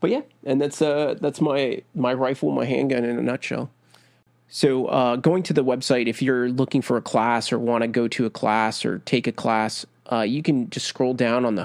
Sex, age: male, 20-39